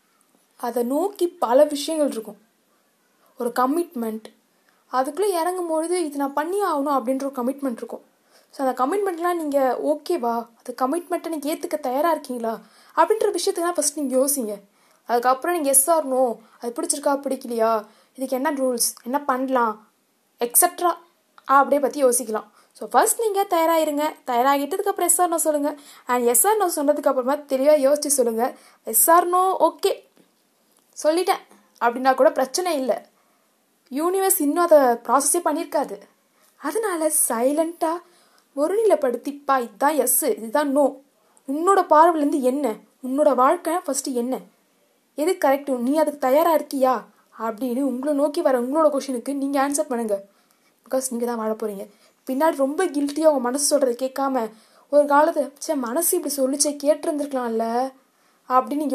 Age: 20-39